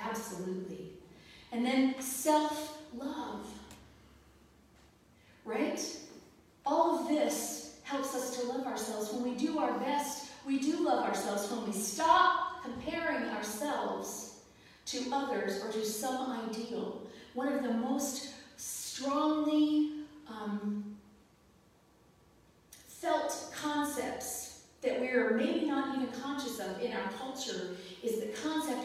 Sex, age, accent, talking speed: female, 40-59, American, 115 wpm